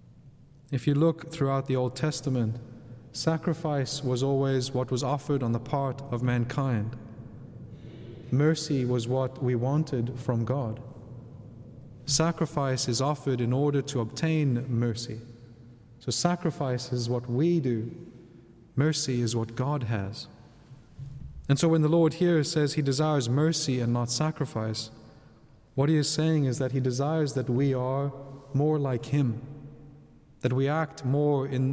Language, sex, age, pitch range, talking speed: English, male, 30-49, 125-150 Hz, 145 wpm